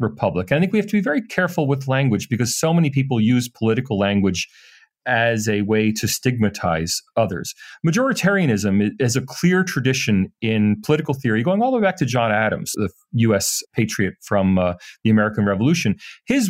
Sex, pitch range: male, 110-165 Hz